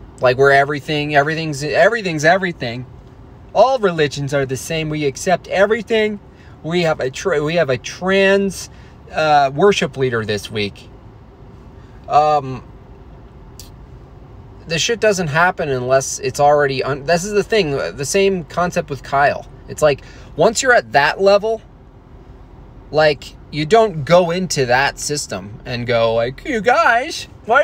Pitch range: 130-195 Hz